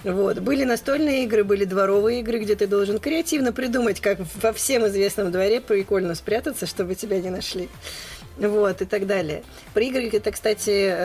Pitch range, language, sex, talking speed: 170-210 Hz, Russian, female, 165 wpm